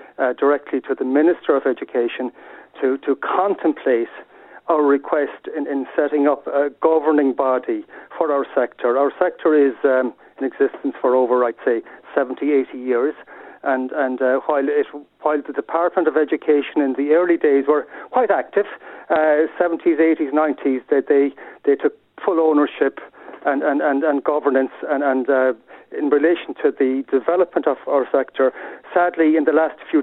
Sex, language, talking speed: male, English, 165 wpm